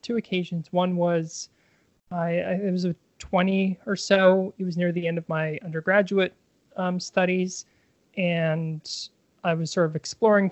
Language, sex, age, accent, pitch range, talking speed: English, male, 20-39, American, 170-200 Hz, 160 wpm